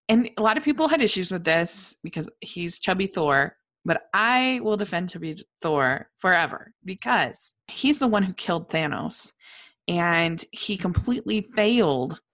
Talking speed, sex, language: 150 wpm, female, English